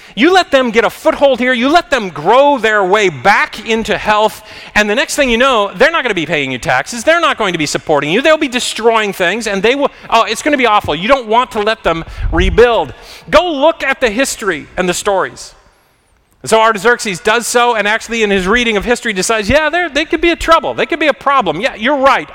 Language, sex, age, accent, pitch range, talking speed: English, male, 40-59, American, 190-255 Hz, 245 wpm